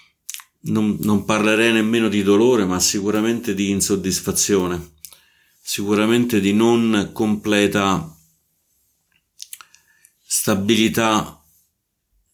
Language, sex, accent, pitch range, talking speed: Italian, male, native, 90-105 Hz, 75 wpm